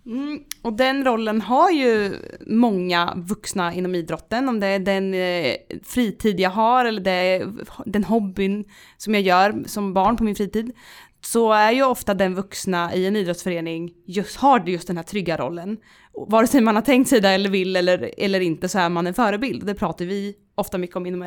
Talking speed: 195 wpm